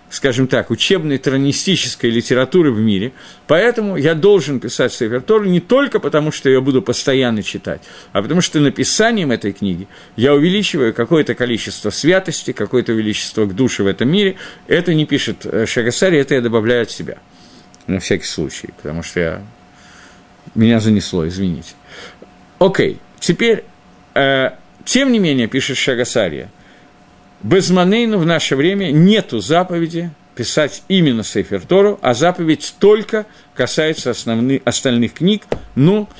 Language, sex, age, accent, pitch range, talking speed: Russian, male, 50-69, native, 115-175 Hz, 140 wpm